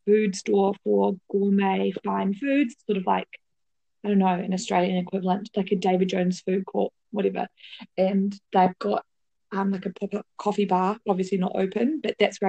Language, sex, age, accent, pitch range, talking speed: English, female, 20-39, Australian, 200-255 Hz, 180 wpm